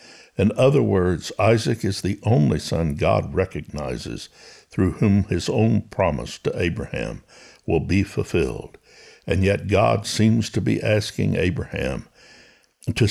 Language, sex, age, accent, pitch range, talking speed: English, male, 60-79, American, 85-110 Hz, 135 wpm